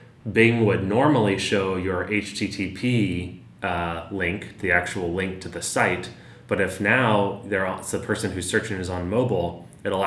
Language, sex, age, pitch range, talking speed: English, male, 20-39, 90-105 Hz, 150 wpm